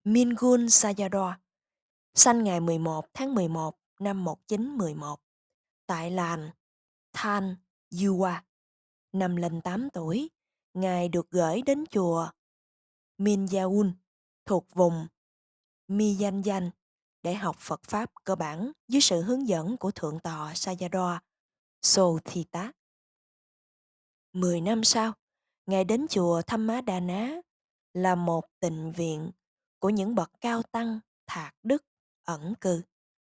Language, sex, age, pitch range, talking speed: Vietnamese, female, 20-39, 175-225 Hz, 115 wpm